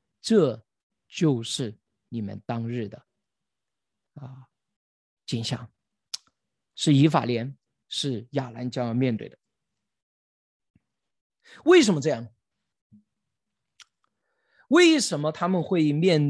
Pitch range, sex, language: 130-205 Hz, male, Chinese